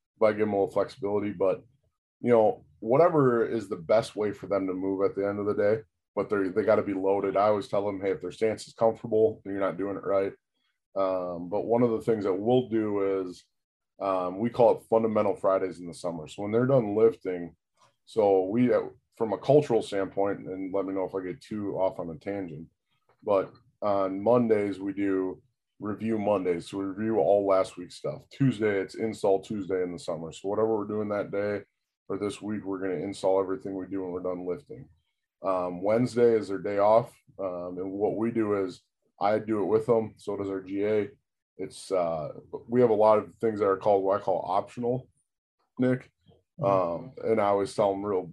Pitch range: 95-110 Hz